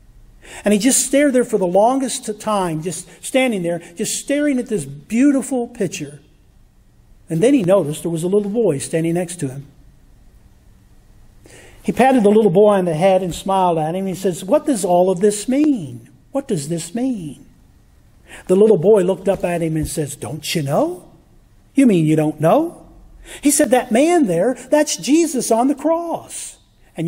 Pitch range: 165-260 Hz